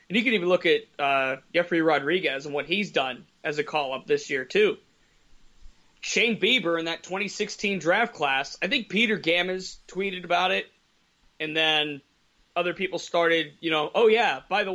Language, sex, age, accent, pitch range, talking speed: English, male, 30-49, American, 165-205 Hz, 180 wpm